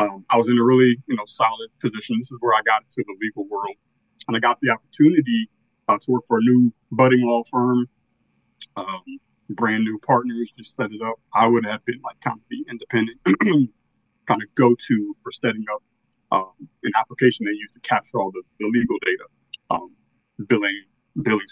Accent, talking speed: American, 200 wpm